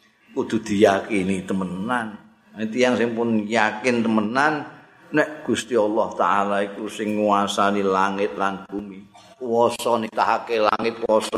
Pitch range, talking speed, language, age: 110-160 Hz, 135 wpm, Indonesian, 50-69